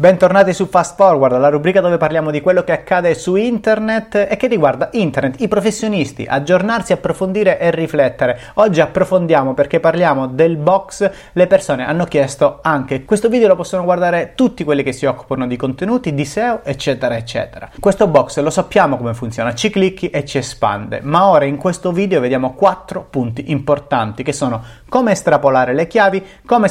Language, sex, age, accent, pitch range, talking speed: Italian, male, 30-49, native, 135-190 Hz, 175 wpm